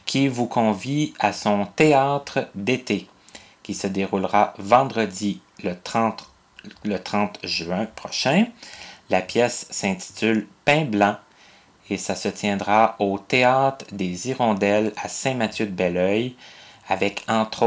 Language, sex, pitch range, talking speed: French, male, 100-125 Hz, 115 wpm